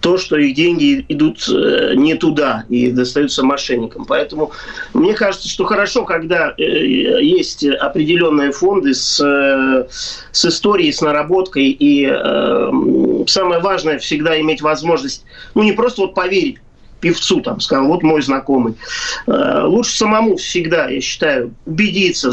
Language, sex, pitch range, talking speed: Russian, male, 150-215 Hz, 125 wpm